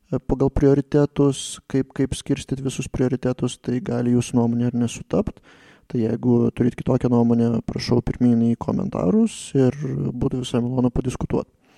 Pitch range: 115-135 Hz